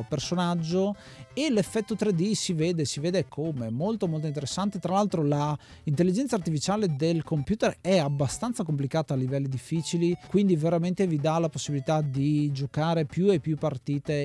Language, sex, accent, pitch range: Italian, male, native, 140-175 Hz